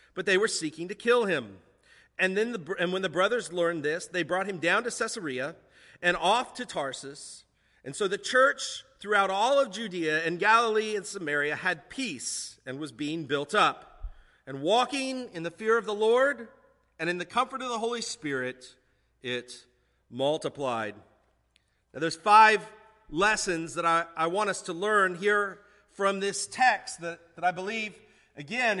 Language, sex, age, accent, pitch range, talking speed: English, male, 40-59, American, 165-220 Hz, 175 wpm